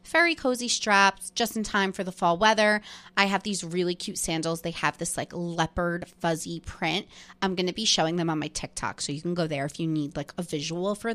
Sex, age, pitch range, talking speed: female, 20-39, 165-215 Hz, 235 wpm